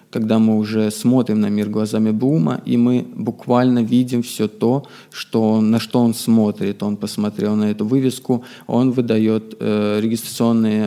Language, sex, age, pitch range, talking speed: Russian, male, 20-39, 105-120 Hz, 150 wpm